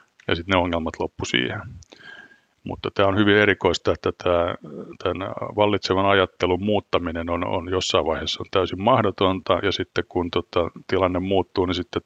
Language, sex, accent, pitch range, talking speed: Finnish, male, native, 90-100 Hz, 155 wpm